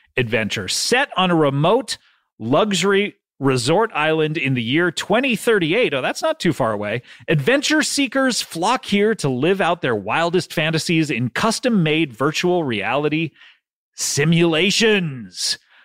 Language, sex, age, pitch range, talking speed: English, male, 30-49, 150-220 Hz, 130 wpm